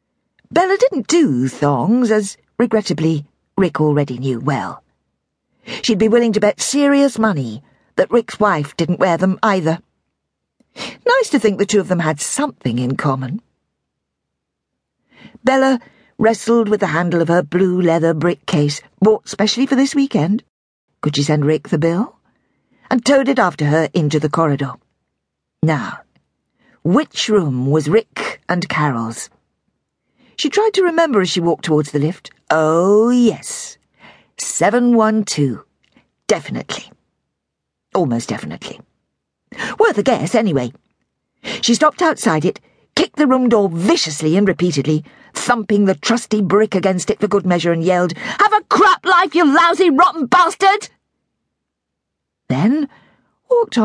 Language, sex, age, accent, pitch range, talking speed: English, female, 50-69, British, 155-245 Hz, 140 wpm